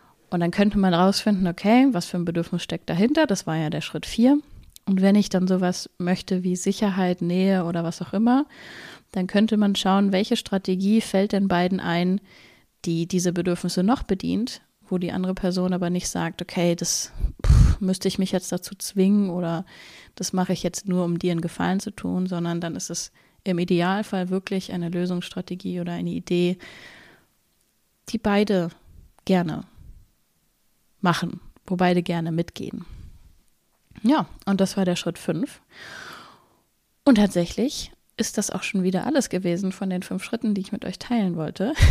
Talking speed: 170 wpm